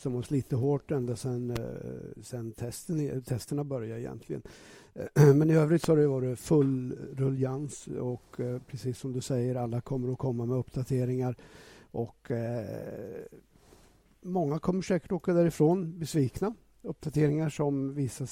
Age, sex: 60-79, male